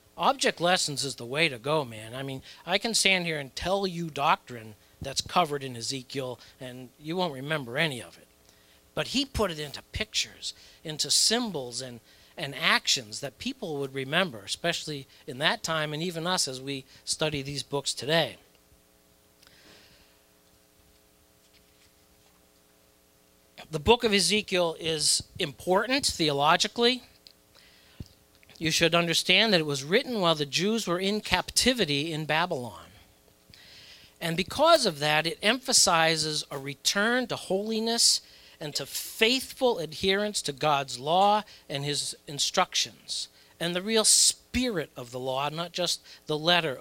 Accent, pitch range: American, 120-190 Hz